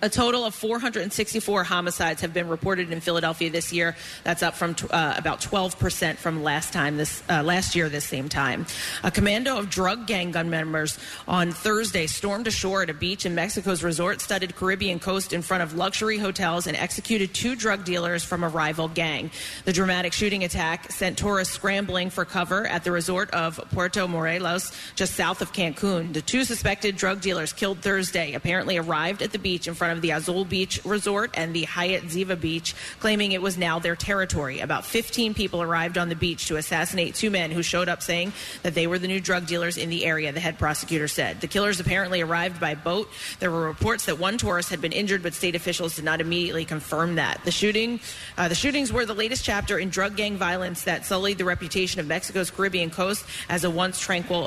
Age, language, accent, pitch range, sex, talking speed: 30-49, English, American, 165-195 Hz, female, 205 wpm